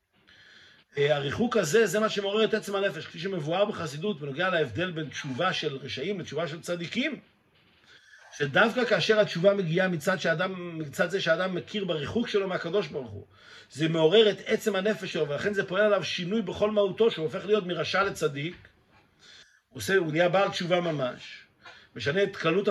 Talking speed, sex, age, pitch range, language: 165 wpm, male, 50-69, 160-210 Hz, Hebrew